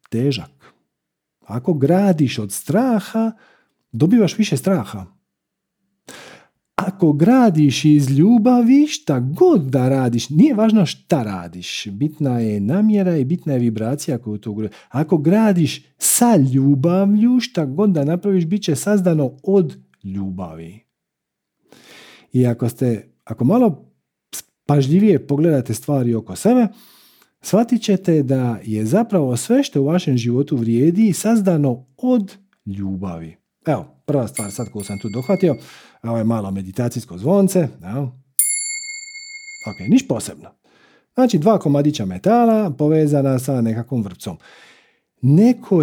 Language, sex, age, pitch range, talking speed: Croatian, male, 50-69, 120-200 Hz, 120 wpm